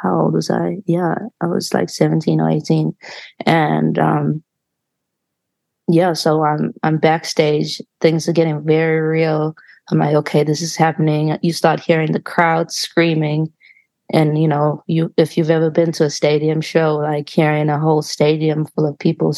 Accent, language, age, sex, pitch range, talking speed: American, English, 20-39, female, 150-165 Hz, 170 wpm